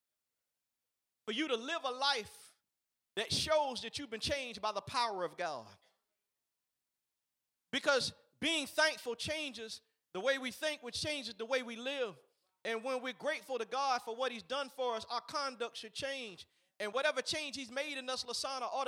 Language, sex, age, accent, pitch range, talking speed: English, male, 40-59, American, 225-275 Hz, 180 wpm